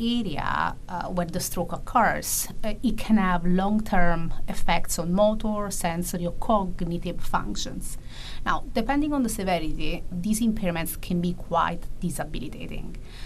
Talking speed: 125 wpm